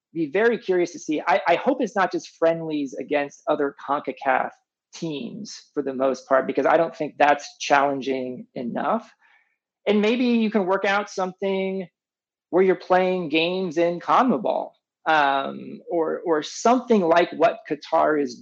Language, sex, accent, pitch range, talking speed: English, male, American, 145-195 Hz, 155 wpm